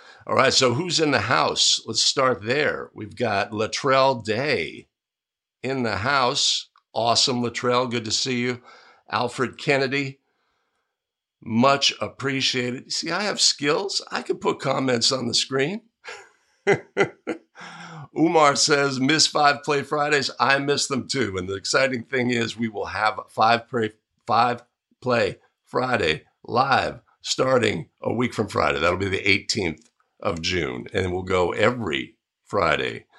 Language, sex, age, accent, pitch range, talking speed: English, male, 50-69, American, 110-135 Hz, 140 wpm